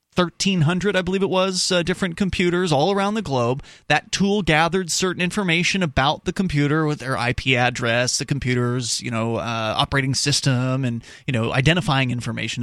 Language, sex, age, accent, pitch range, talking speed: English, male, 30-49, American, 115-145 Hz, 170 wpm